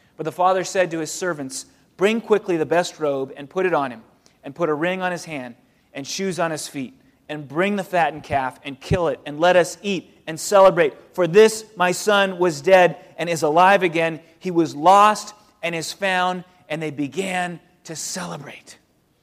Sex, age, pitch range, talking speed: male, 30-49, 145-180 Hz, 200 wpm